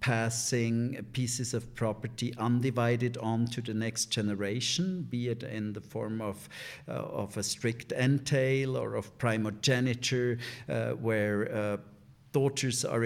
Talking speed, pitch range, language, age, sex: 135 wpm, 105-120 Hz, English, 50-69, male